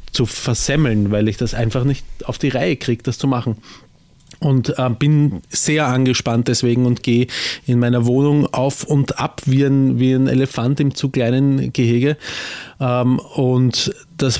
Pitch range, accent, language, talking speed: 120-145 Hz, Austrian, German, 165 wpm